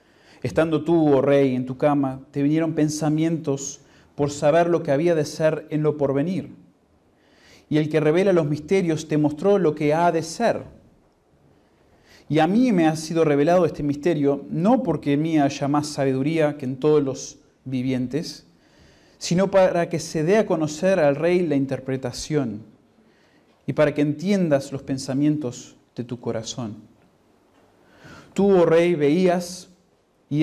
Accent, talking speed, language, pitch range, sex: Argentinian, 155 wpm, Spanish, 140-165 Hz, male